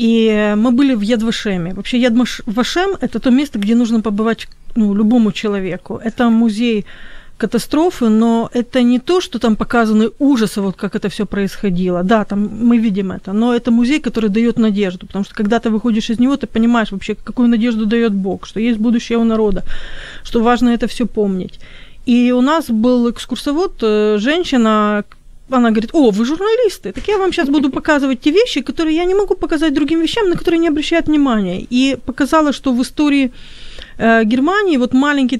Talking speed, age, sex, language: 185 wpm, 40-59, female, Ukrainian